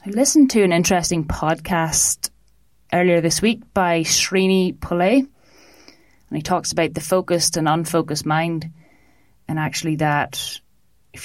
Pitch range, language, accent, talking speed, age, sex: 150-170 Hz, English, Irish, 135 wpm, 30-49, female